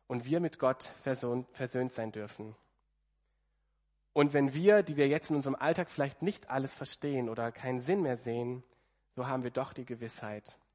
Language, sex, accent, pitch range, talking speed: German, male, German, 115-150 Hz, 175 wpm